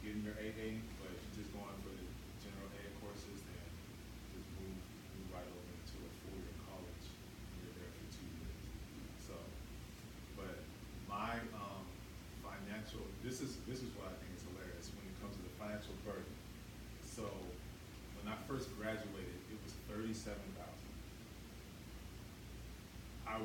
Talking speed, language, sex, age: 145 wpm, English, male, 30-49